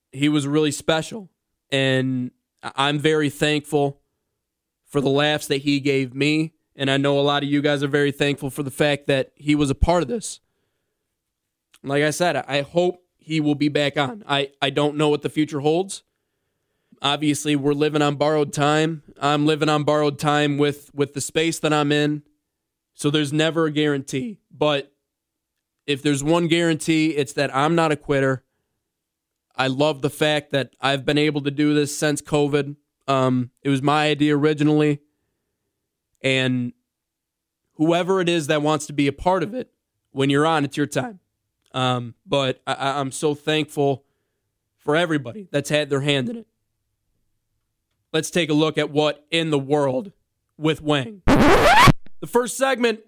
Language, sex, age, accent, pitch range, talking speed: English, male, 20-39, American, 140-155 Hz, 170 wpm